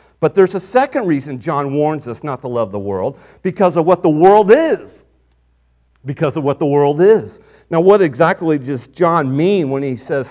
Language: English